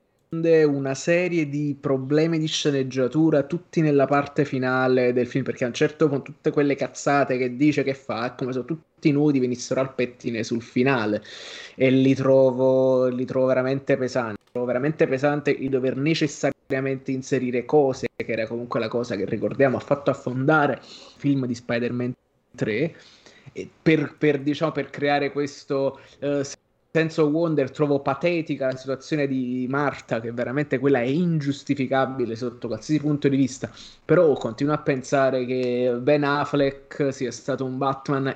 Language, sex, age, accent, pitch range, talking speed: Italian, male, 20-39, native, 130-150 Hz, 155 wpm